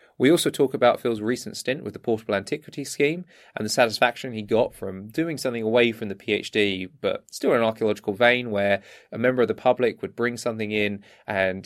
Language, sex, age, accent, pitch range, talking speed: English, male, 20-39, British, 105-125 Hz, 210 wpm